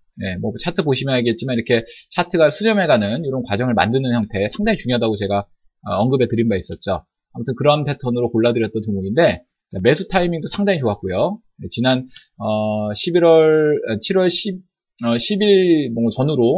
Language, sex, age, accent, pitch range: Korean, male, 20-39, native, 110-165 Hz